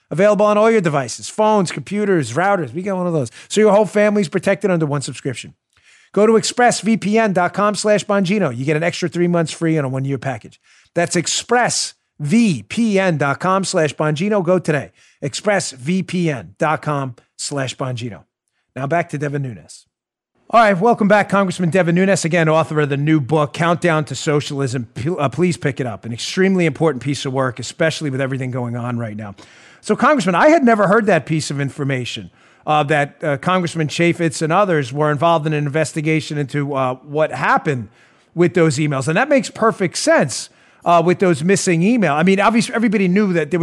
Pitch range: 145-195 Hz